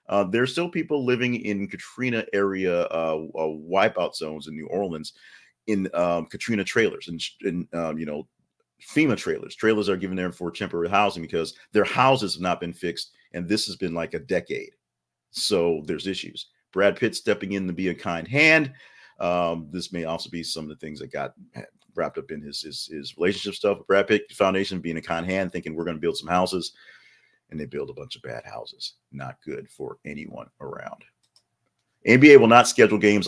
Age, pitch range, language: 40-59, 85-115 Hz, English